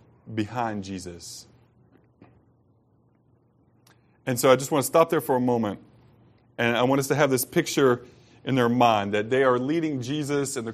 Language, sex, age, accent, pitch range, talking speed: English, male, 30-49, American, 120-145 Hz, 175 wpm